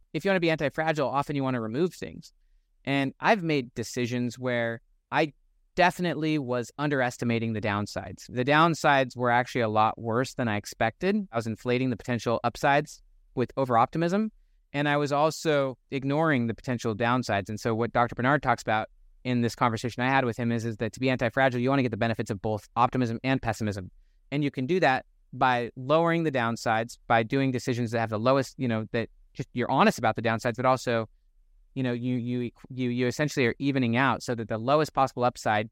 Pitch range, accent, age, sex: 115-140 Hz, American, 20-39, male